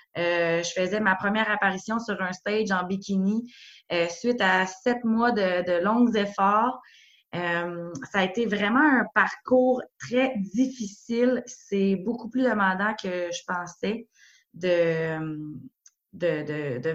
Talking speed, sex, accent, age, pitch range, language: 135 wpm, female, Canadian, 20-39, 185-230 Hz, French